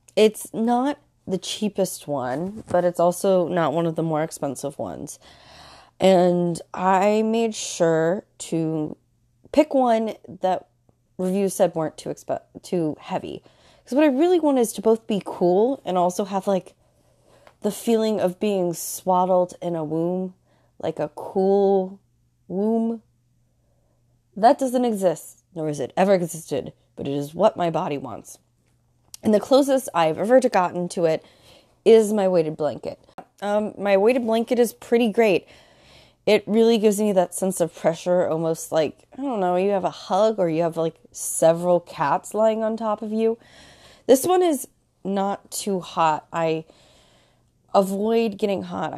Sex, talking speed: female, 155 wpm